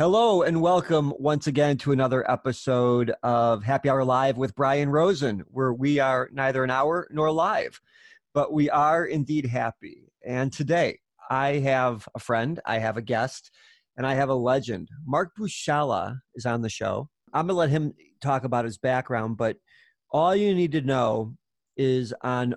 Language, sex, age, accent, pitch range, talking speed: English, male, 40-59, American, 120-145 Hz, 175 wpm